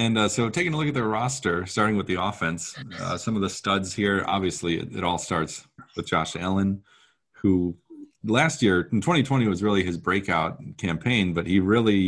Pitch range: 90-120 Hz